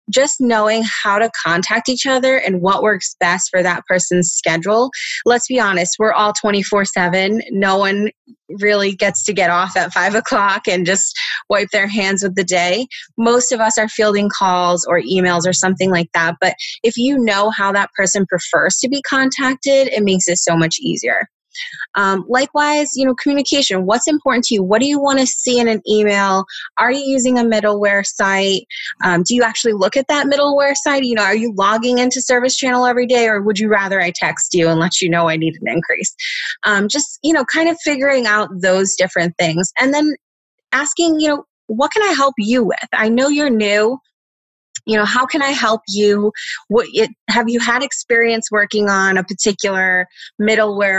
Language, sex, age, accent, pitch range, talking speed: English, female, 20-39, American, 190-250 Hz, 200 wpm